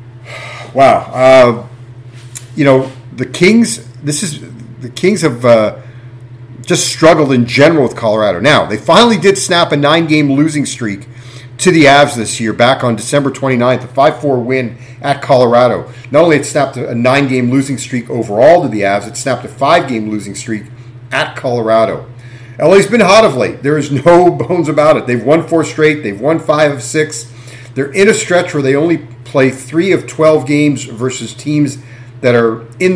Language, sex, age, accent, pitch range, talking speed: English, male, 40-59, American, 120-150 Hz, 180 wpm